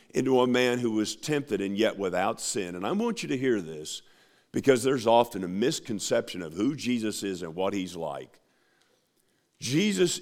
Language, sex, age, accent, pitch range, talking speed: English, male, 50-69, American, 100-145 Hz, 180 wpm